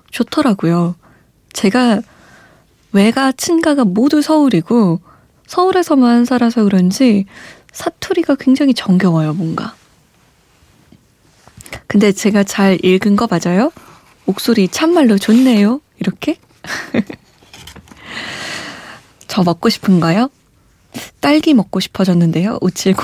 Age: 20-39